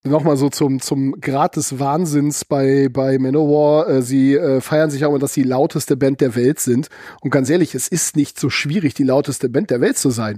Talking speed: 220 wpm